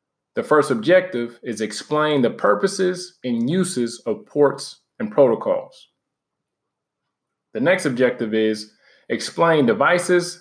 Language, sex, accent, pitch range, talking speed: English, male, American, 125-180 Hz, 110 wpm